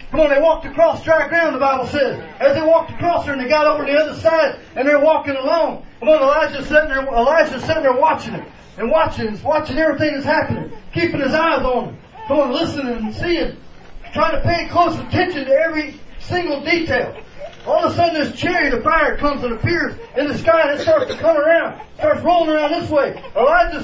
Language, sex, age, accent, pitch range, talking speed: English, male, 30-49, American, 275-330 Hz, 215 wpm